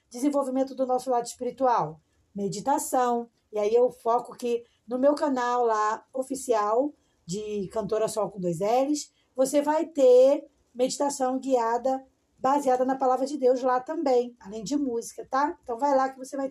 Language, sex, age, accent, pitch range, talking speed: Portuguese, female, 20-39, Brazilian, 230-290 Hz, 160 wpm